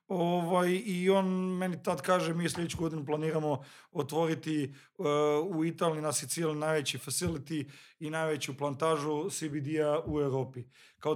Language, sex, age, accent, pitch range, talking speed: Croatian, male, 40-59, Serbian, 145-170 Hz, 135 wpm